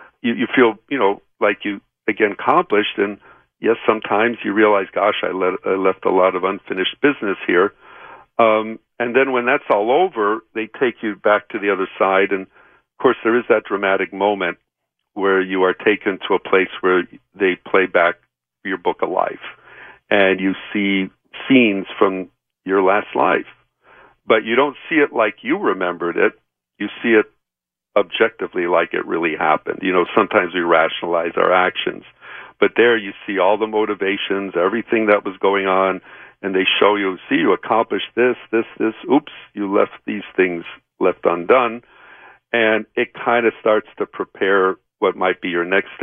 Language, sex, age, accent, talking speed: English, male, 60-79, American, 175 wpm